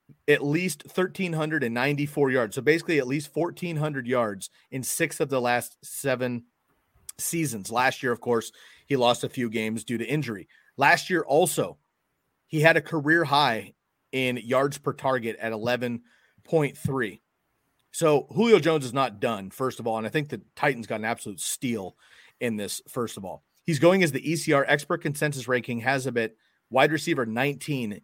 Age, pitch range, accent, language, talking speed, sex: 30-49, 115-150 Hz, American, English, 170 wpm, male